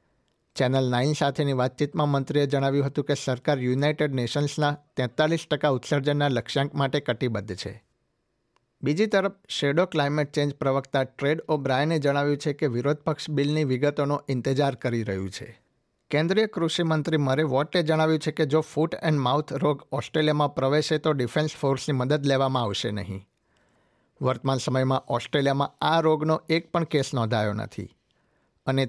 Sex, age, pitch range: male, 60-79, 130-150 Hz